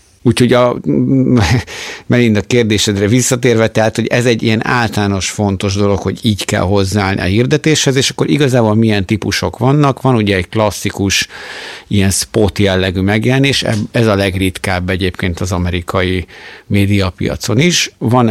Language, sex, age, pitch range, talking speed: Hungarian, male, 50-69, 95-110 Hz, 140 wpm